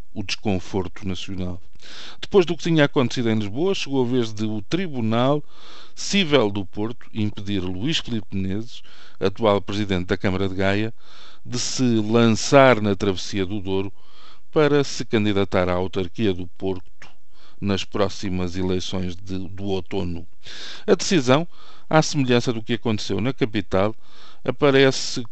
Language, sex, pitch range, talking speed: Portuguese, male, 95-125 Hz, 135 wpm